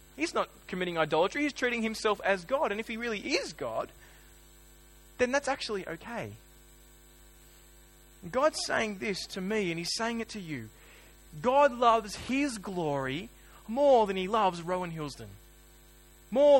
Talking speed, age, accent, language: 150 wpm, 20-39, Australian, English